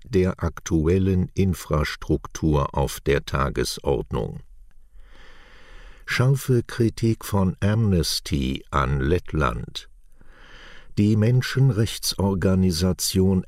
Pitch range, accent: 80-100 Hz, German